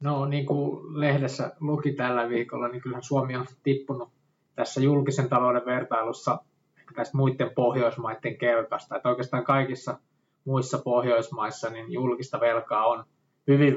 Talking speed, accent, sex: 125 wpm, native, male